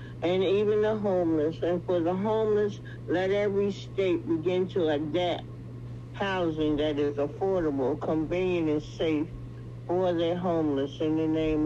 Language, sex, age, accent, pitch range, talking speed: English, male, 60-79, American, 145-180 Hz, 140 wpm